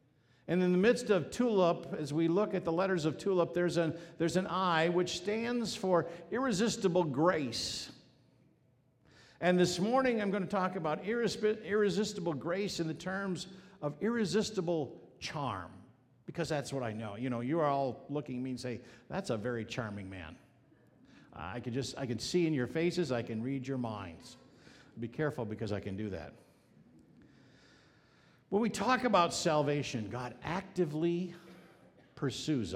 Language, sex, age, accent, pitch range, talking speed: English, male, 50-69, American, 135-195 Hz, 165 wpm